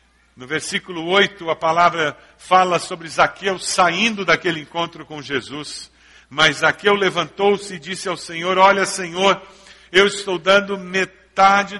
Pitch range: 155-195 Hz